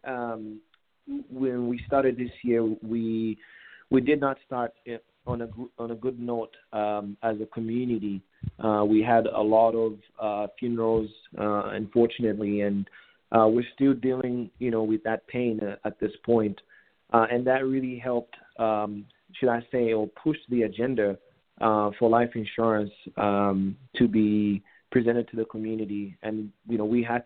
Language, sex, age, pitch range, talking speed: English, male, 30-49, 110-120 Hz, 165 wpm